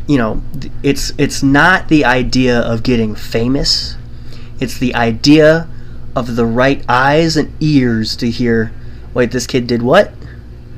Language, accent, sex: English, American, male